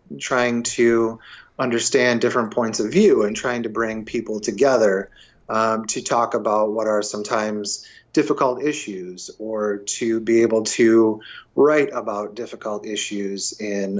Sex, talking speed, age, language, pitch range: male, 135 wpm, 30-49, English, 120-165 Hz